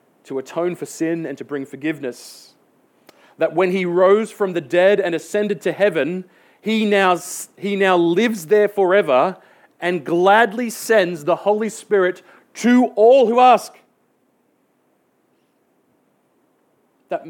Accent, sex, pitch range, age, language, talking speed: Australian, male, 145-195 Hz, 30-49, English, 130 wpm